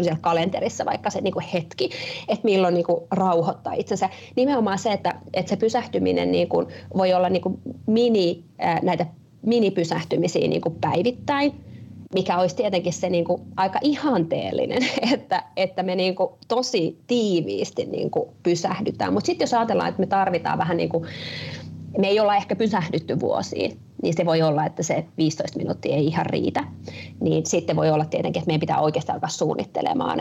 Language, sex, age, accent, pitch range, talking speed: Finnish, female, 20-39, native, 175-220 Hz, 175 wpm